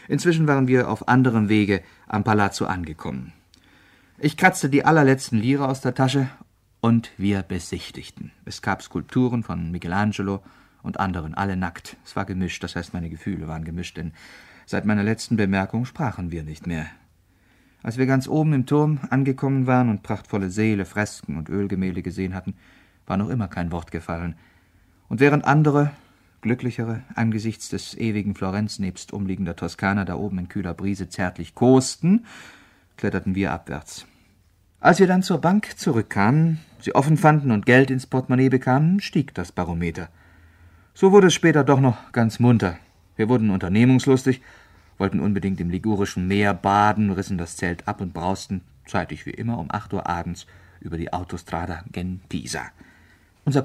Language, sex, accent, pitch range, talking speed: German, male, German, 90-125 Hz, 160 wpm